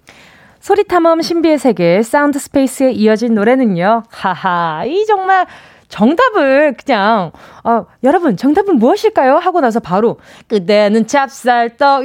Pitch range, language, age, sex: 215-320 Hz, Korean, 20-39, female